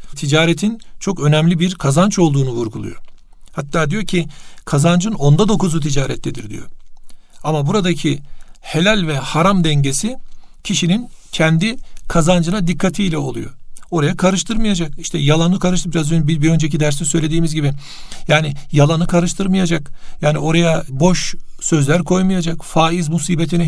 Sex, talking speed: male, 120 wpm